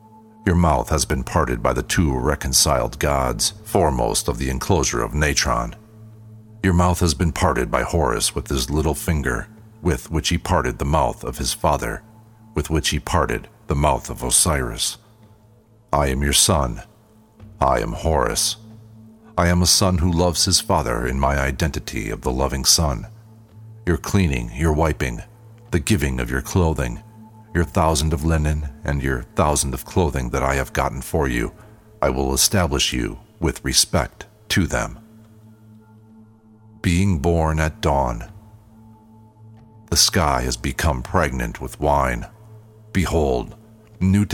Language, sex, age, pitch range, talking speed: English, male, 50-69, 75-110 Hz, 150 wpm